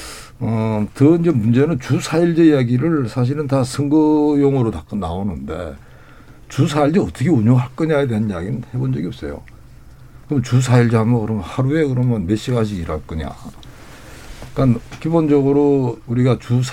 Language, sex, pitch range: Korean, male, 105-145 Hz